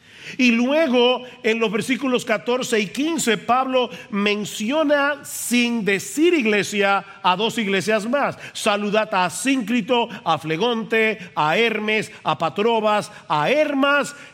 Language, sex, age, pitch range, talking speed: Spanish, male, 50-69, 190-240 Hz, 115 wpm